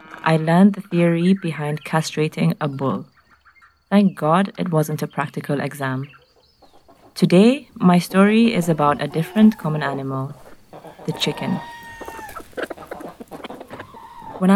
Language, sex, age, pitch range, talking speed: English, female, 30-49, 155-200 Hz, 110 wpm